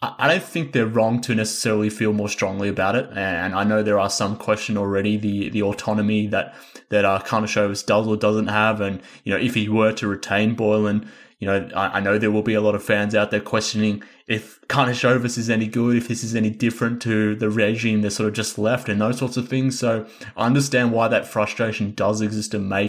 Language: English